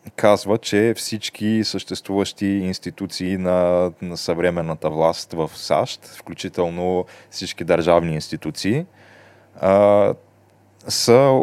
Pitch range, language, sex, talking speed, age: 90-105 Hz, Bulgarian, male, 90 wpm, 20-39